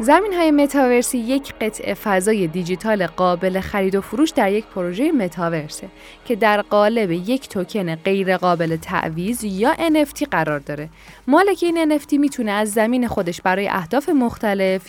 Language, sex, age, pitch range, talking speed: Persian, female, 10-29, 185-275 Hz, 150 wpm